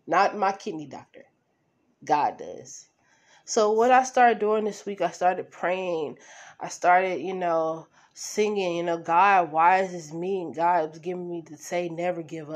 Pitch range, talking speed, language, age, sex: 165-195 Hz, 175 wpm, English, 20-39, female